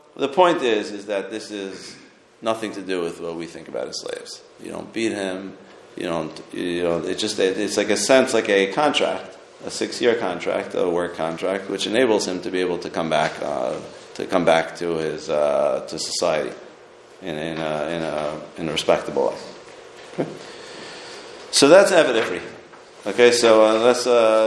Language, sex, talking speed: English, male, 185 wpm